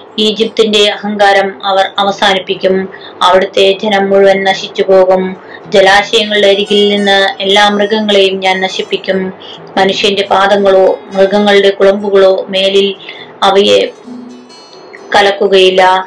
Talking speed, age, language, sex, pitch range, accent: 85 wpm, 20-39, Malayalam, female, 190-200 Hz, native